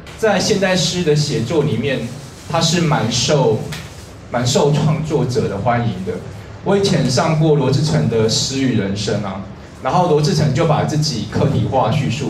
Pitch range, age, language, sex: 115-155 Hz, 20-39, Chinese, male